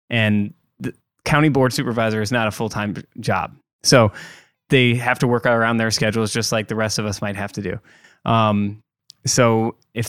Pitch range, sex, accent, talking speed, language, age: 110-130 Hz, male, American, 185 wpm, English, 20-39